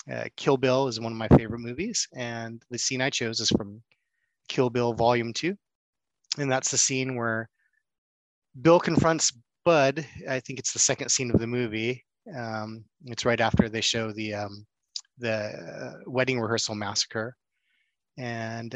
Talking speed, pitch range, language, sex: 165 wpm, 115-130 Hz, English, male